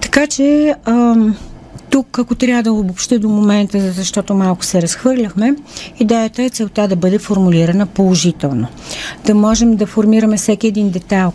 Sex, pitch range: female, 170-210 Hz